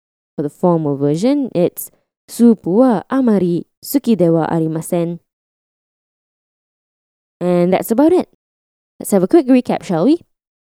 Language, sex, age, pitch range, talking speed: English, female, 10-29, 170-245 Hz, 115 wpm